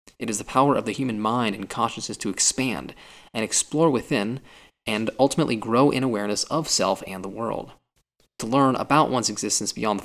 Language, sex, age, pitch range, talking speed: English, male, 20-39, 110-140 Hz, 190 wpm